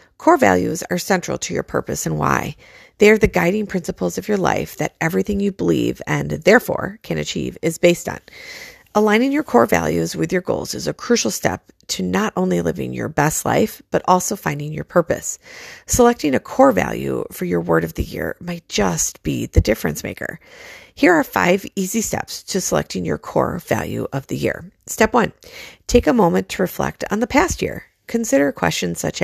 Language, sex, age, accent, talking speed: English, female, 40-59, American, 195 wpm